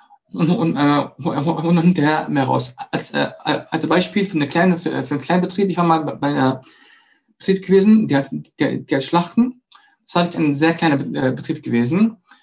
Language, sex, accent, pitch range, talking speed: German, male, German, 145-190 Hz, 190 wpm